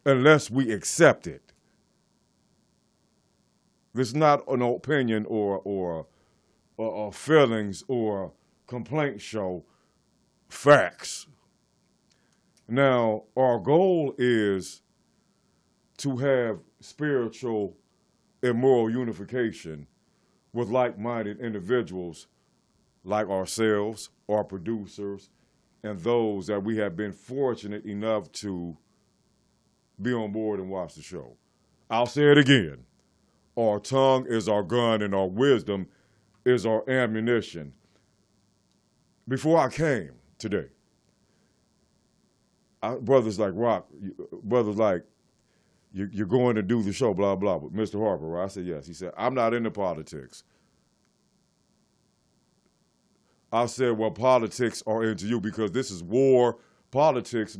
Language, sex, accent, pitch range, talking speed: English, male, American, 100-125 Hz, 110 wpm